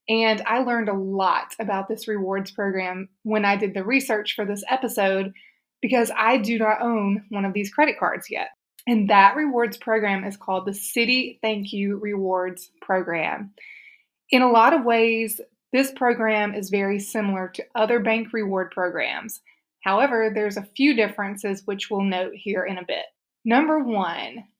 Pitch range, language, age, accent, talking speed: 200-235 Hz, English, 20-39, American, 170 wpm